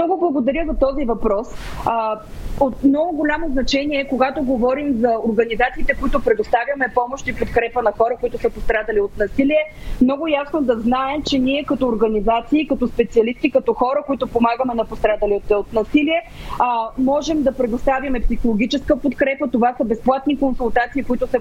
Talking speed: 150 wpm